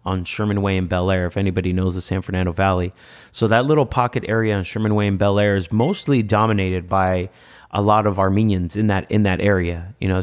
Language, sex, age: English, male, 30-49